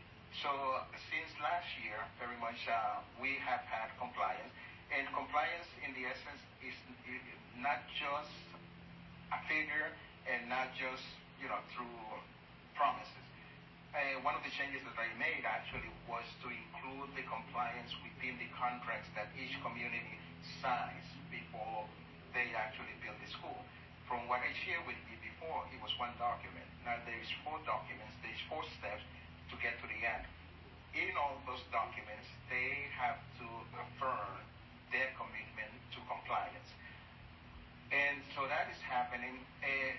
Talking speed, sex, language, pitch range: 145 wpm, male, English, 85-130 Hz